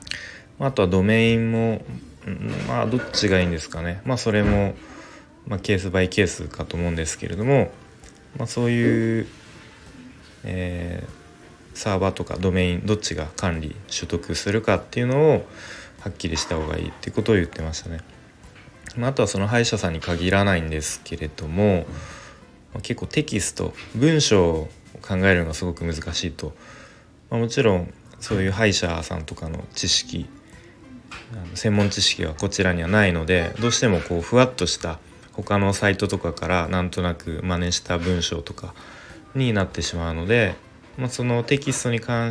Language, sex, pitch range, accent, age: Japanese, male, 85-110 Hz, native, 20-39